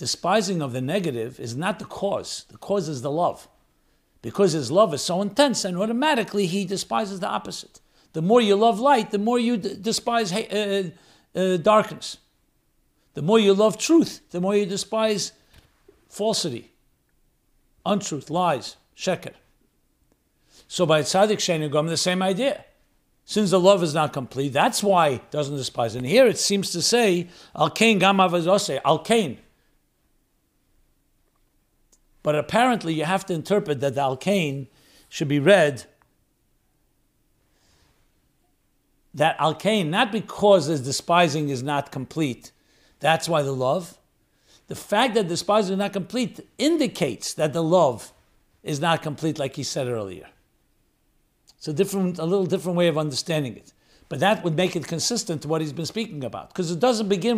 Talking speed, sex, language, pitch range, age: 155 wpm, male, English, 150-205 Hz, 60-79